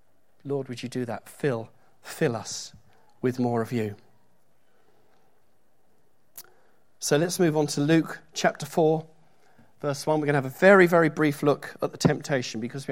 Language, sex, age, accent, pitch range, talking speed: English, male, 40-59, British, 125-160 Hz, 165 wpm